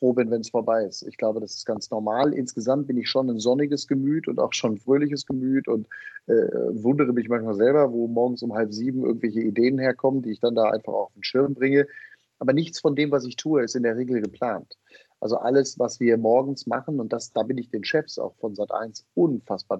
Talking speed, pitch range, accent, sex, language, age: 230 wpm, 110-135 Hz, German, male, German, 30-49